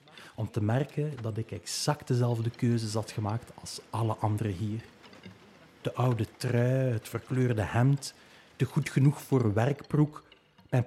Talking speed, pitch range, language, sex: 145 wpm, 110-140 Hz, Dutch, male